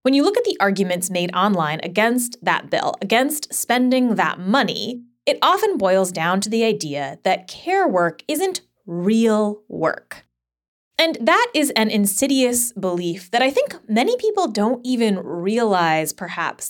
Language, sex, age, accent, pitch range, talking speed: English, female, 20-39, American, 175-255 Hz, 155 wpm